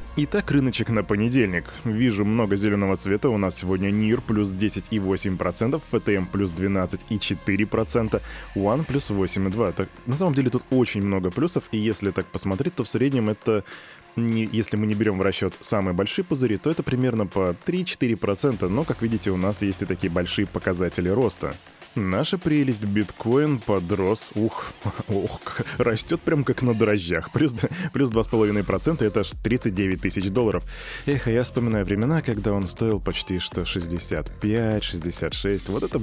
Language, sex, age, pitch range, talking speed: Russian, male, 20-39, 95-125 Hz, 150 wpm